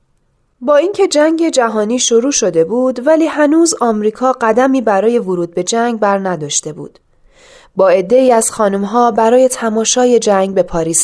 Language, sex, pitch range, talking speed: Persian, female, 210-275 Hz, 150 wpm